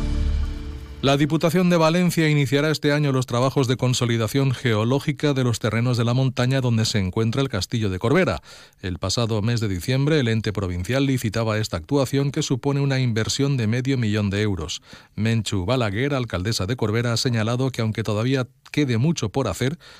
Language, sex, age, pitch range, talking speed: Spanish, male, 40-59, 120-170 Hz, 175 wpm